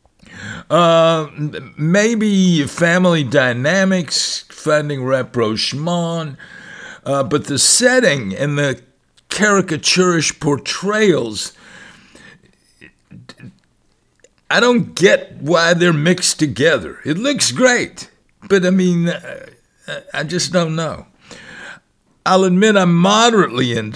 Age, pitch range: 60-79, 150-190 Hz